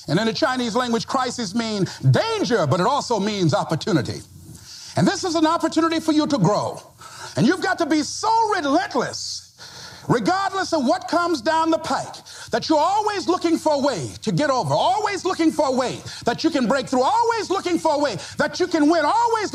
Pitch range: 265-360 Hz